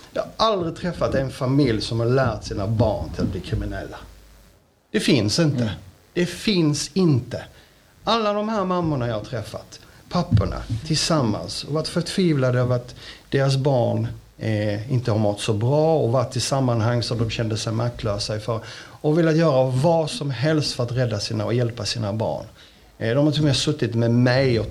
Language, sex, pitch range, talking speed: Swedish, male, 110-150 Hz, 190 wpm